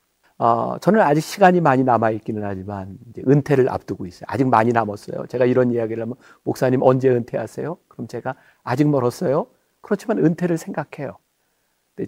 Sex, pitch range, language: male, 110-160 Hz, Korean